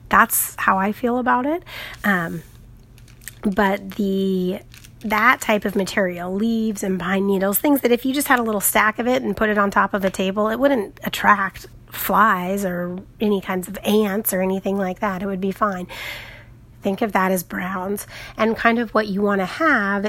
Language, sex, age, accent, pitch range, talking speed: English, female, 30-49, American, 180-215 Hz, 195 wpm